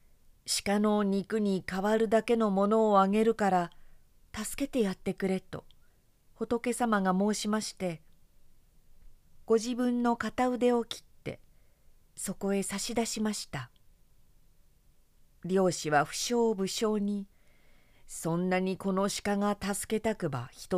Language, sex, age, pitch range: Japanese, female, 40-59, 155-225 Hz